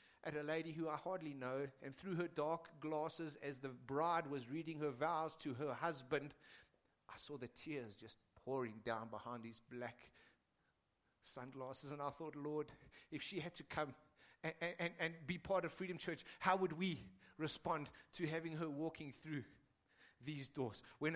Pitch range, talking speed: 135-185 Hz, 175 wpm